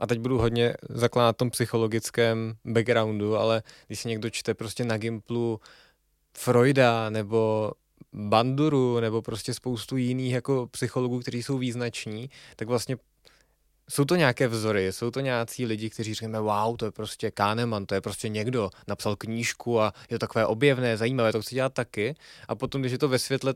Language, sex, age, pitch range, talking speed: Czech, male, 20-39, 115-135 Hz, 175 wpm